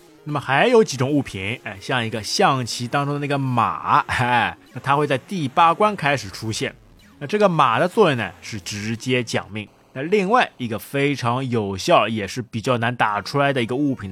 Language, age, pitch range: Chinese, 20-39, 110-145 Hz